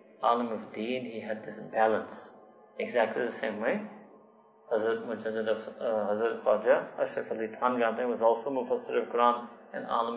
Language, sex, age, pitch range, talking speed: English, male, 30-49, 110-145 Hz, 155 wpm